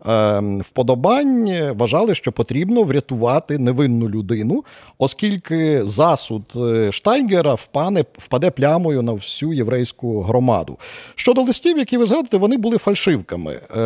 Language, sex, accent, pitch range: Ukrainian, male, native, 120-180 Hz